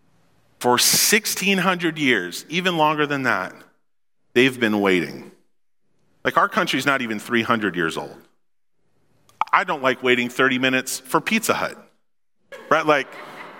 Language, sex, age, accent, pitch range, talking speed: English, male, 40-59, American, 135-195 Hz, 130 wpm